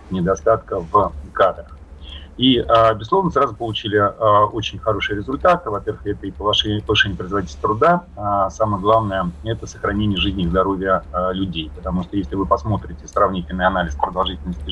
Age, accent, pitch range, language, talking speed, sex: 30-49, native, 90-105 Hz, Russian, 130 wpm, male